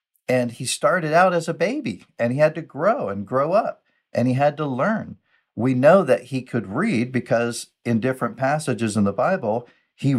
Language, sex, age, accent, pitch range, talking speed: English, male, 50-69, American, 105-130 Hz, 200 wpm